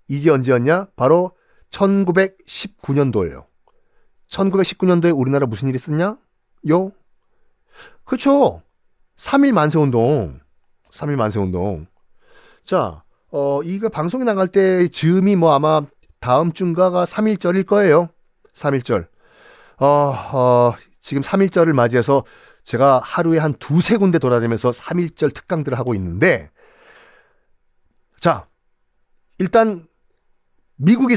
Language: Korean